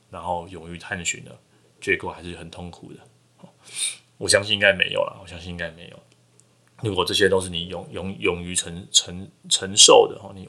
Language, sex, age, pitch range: Chinese, male, 20-39, 85-100 Hz